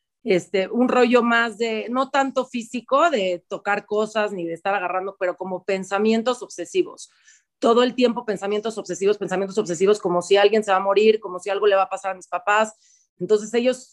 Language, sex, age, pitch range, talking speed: Spanish, female, 30-49, 180-225 Hz, 195 wpm